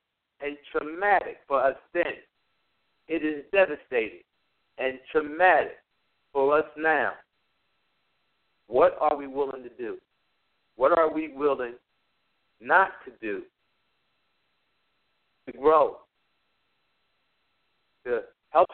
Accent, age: American, 60-79